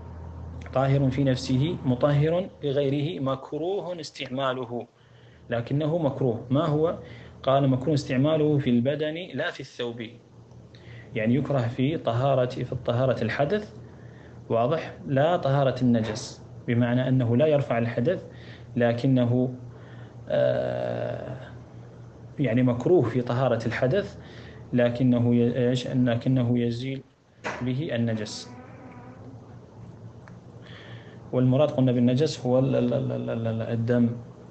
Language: Arabic